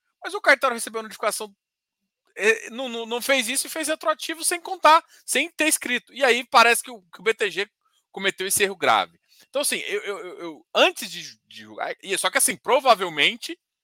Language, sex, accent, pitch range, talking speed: Portuguese, male, Brazilian, 170-270 Hz, 185 wpm